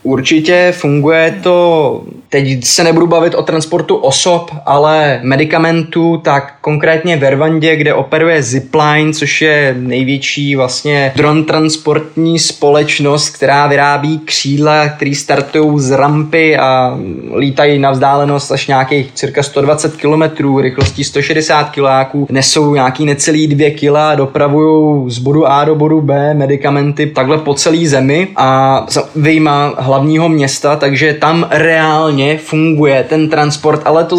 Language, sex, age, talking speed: Czech, male, 20-39, 130 wpm